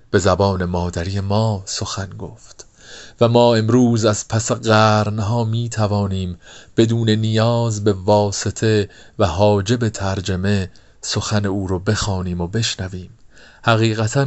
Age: 40-59